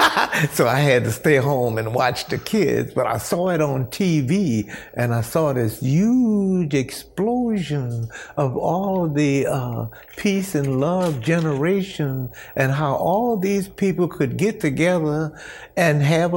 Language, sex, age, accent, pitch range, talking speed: English, male, 60-79, American, 130-160 Hz, 150 wpm